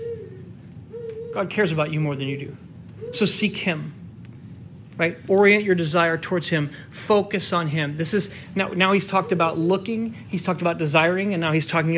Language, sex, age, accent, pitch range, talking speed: English, male, 30-49, American, 150-195 Hz, 180 wpm